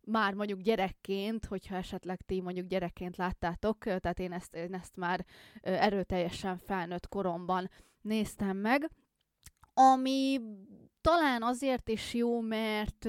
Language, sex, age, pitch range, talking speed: Hungarian, female, 20-39, 190-225 Hz, 120 wpm